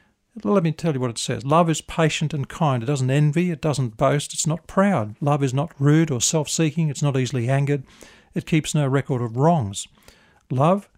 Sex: male